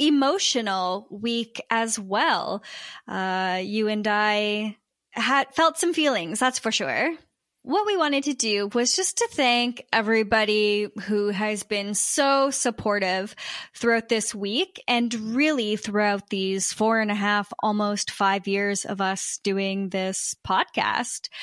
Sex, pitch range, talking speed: female, 200-250 Hz, 135 wpm